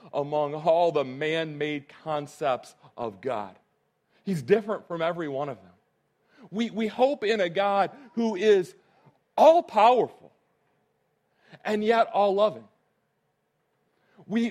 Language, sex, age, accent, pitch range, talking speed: English, male, 40-59, American, 165-225 Hz, 110 wpm